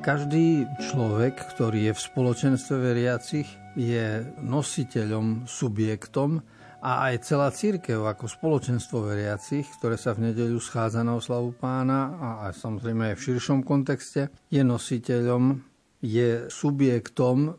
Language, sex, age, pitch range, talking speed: Slovak, male, 50-69, 115-135 Hz, 125 wpm